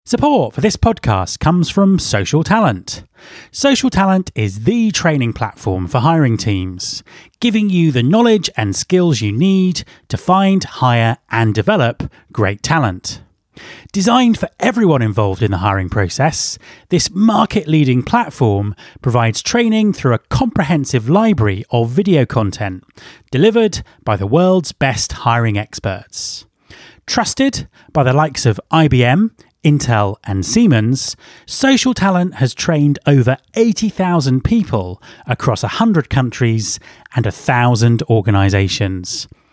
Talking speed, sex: 125 wpm, male